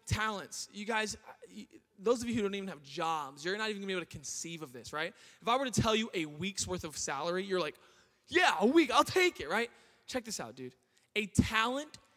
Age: 20-39